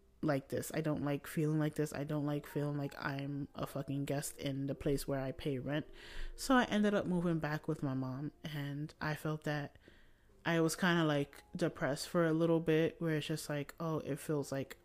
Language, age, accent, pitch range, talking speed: English, 30-49, American, 140-175 Hz, 220 wpm